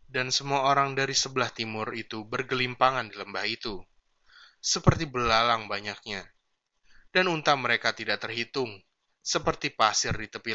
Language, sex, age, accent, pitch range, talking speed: Indonesian, male, 20-39, native, 110-140 Hz, 130 wpm